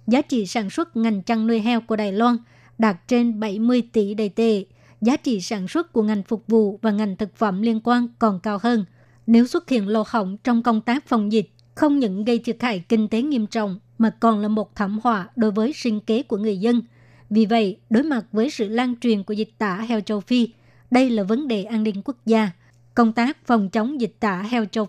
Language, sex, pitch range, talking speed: Vietnamese, male, 210-235 Hz, 230 wpm